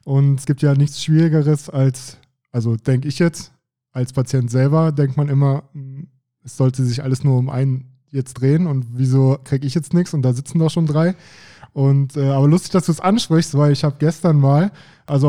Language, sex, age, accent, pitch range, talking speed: German, male, 20-39, German, 135-160 Hz, 205 wpm